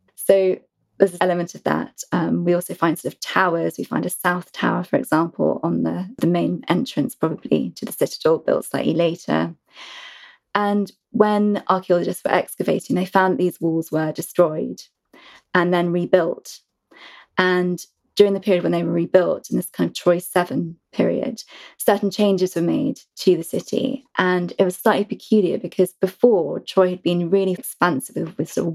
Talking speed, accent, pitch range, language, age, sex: 175 wpm, British, 175-200 Hz, English, 20-39, female